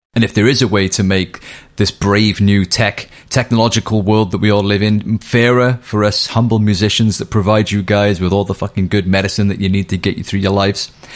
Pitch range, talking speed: 95-125 Hz, 230 wpm